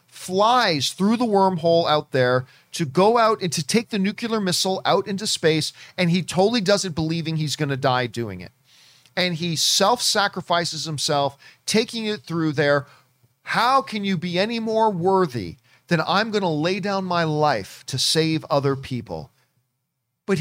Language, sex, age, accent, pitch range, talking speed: English, male, 40-59, American, 140-200 Hz, 170 wpm